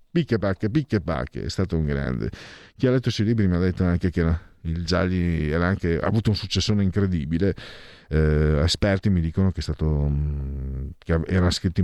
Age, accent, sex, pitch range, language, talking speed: 50-69, native, male, 85-120 Hz, Italian, 195 wpm